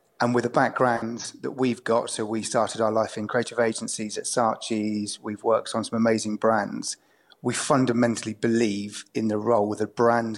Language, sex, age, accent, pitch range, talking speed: English, male, 30-49, British, 105-115 Hz, 185 wpm